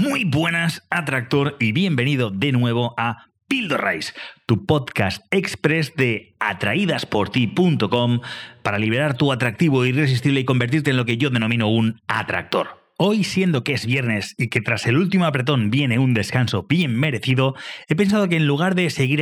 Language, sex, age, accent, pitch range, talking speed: English, male, 30-49, Spanish, 125-175 Hz, 165 wpm